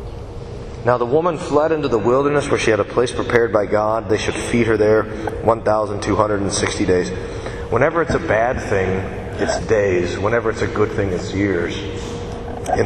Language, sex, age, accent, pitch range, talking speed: English, male, 40-59, American, 100-150 Hz, 175 wpm